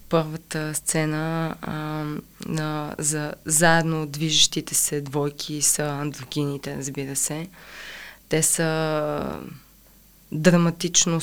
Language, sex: Bulgarian, female